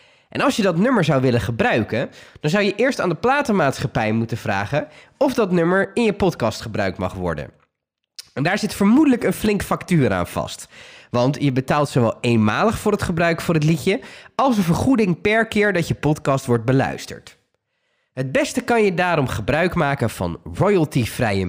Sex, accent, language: male, Dutch, Dutch